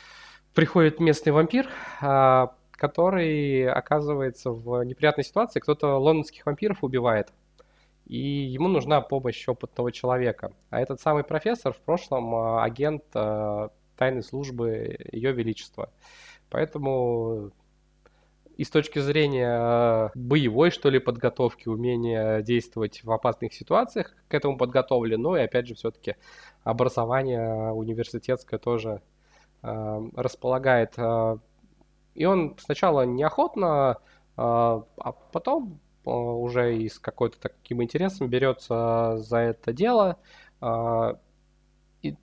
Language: Russian